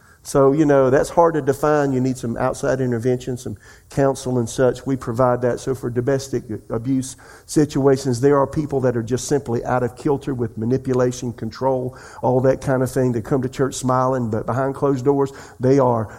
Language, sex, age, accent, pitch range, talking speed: English, male, 50-69, American, 125-140 Hz, 195 wpm